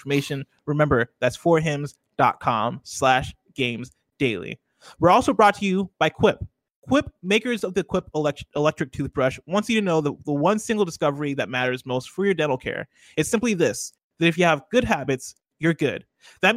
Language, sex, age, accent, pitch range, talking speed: English, male, 20-39, American, 135-185 Hz, 175 wpm